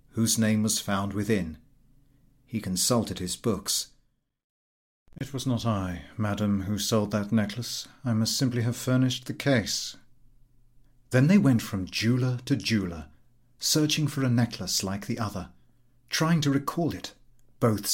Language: English